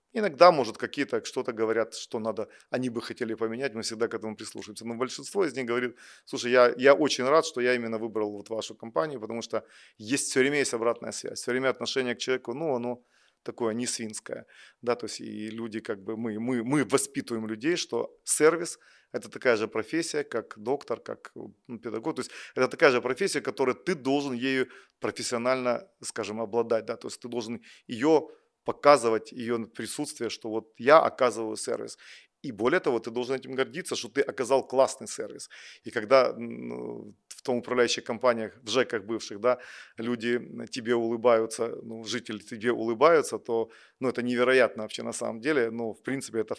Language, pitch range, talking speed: Russian, 115-140 Hz, 185 wpm